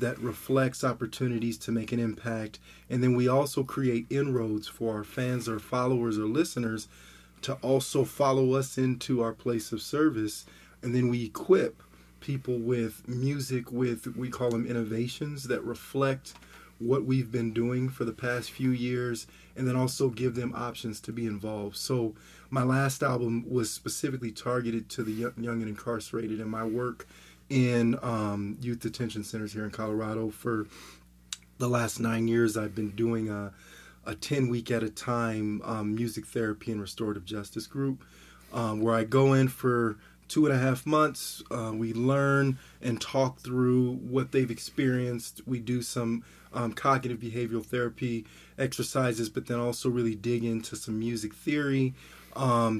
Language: English